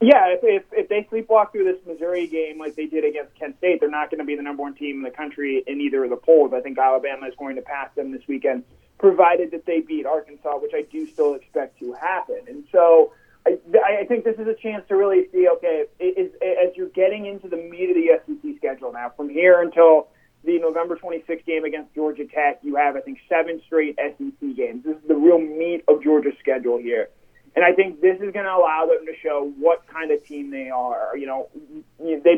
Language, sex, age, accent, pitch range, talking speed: English, male, 30-49, American, 145-200 Hz, 235 wpm